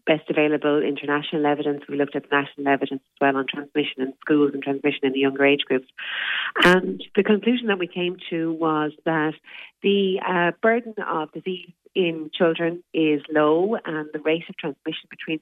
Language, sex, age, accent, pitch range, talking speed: English, female, 30-49, Irish, 145-170 Hz, 180 wpm